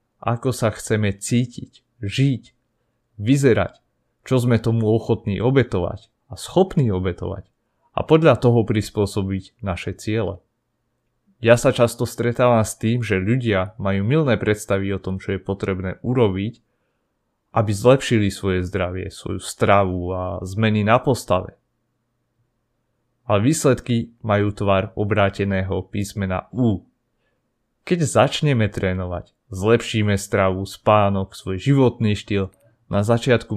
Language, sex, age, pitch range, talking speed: Slovak, male, 30-49, 95-120 Hz, 115 wpm